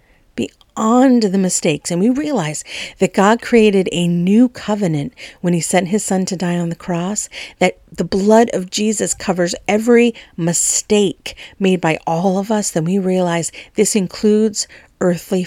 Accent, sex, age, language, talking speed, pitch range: American, female, 50-69, English, 160 wpm, 170-195 Hz